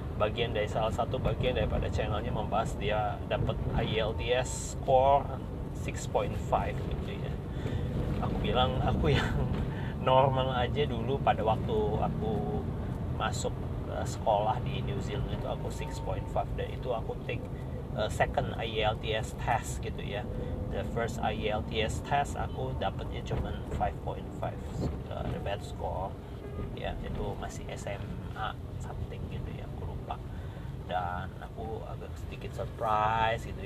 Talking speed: 120 wpm